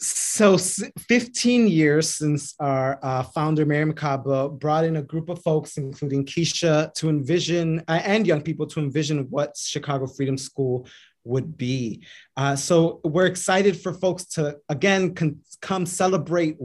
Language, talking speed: English, 155 wpm